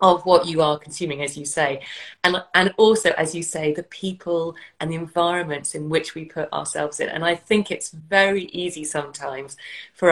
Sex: female